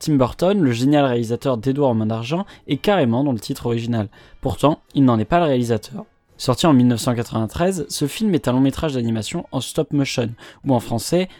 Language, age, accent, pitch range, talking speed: French, 20-39, French, 120-160 Hz, 200 wpm